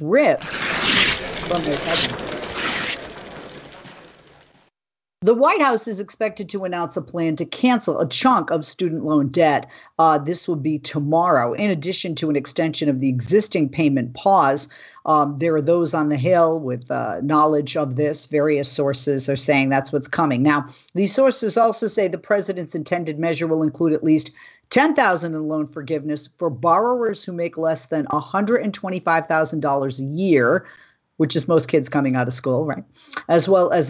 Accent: American